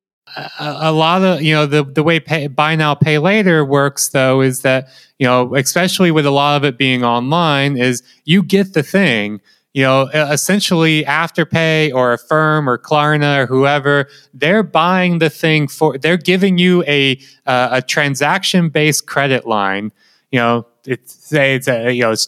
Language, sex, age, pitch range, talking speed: English, male, 30-49, 130-165 Hz, 185 wpm